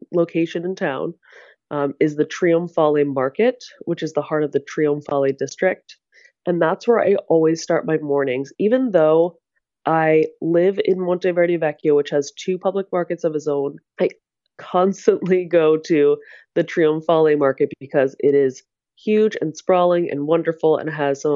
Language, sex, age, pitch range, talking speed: English, female, 20-39, 140-180 Hz, 160 wpm